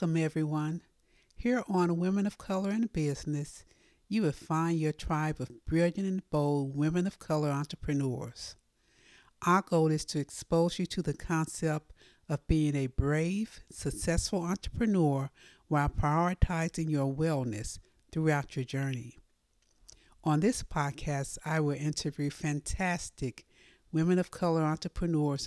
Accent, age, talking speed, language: American, 60-79, 125 wpm, English